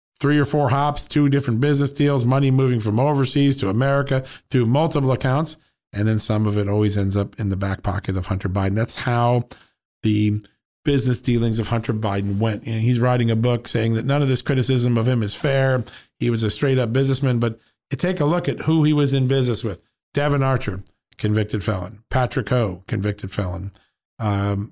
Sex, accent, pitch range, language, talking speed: male, American, 105-135 Hz, English, 195 wpm